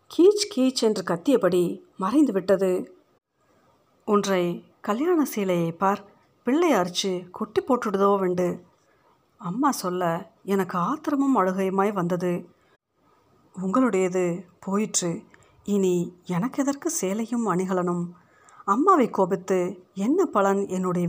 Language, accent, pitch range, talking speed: Tamil, native, 180-225 Hz, 95 wpm